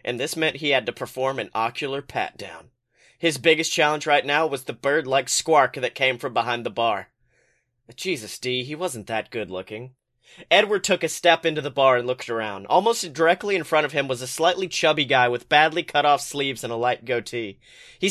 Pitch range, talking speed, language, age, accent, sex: 130-165 Hz, 200 wpm, English, 30-49, American, male